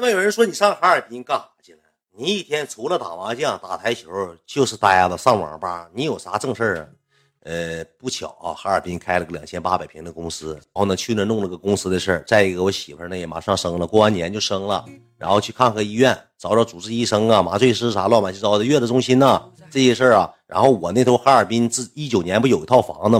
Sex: male